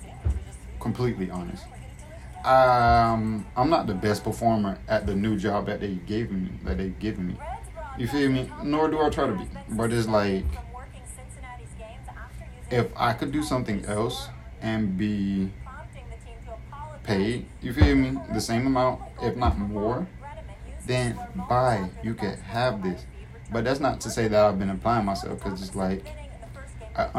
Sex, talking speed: male, 155 wpm